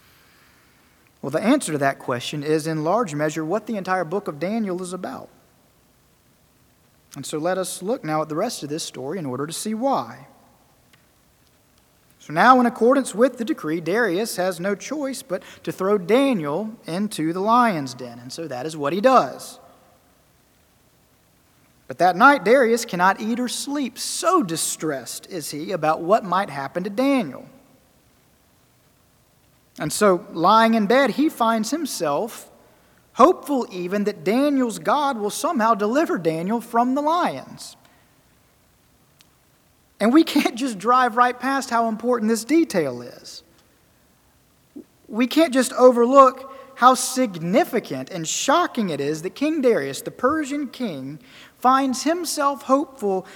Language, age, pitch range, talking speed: English, 40-59, 180-270 Hz, 145 wpm